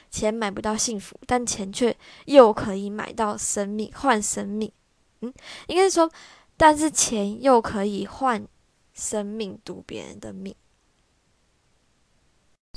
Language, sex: Chinese, female